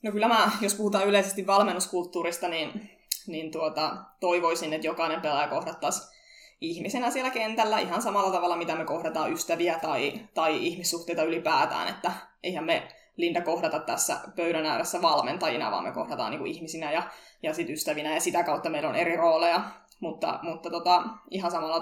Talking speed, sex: 160 wpm, female